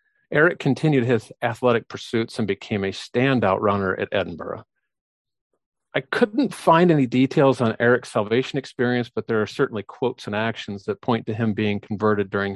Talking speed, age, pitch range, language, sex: 165 wpm, 40-59, 105-130 Hz, English, male